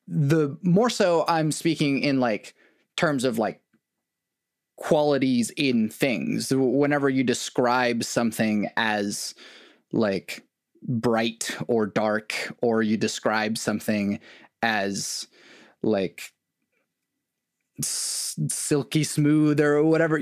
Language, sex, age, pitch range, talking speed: English, male, 20-39, 115-155 Hz, 95 wpm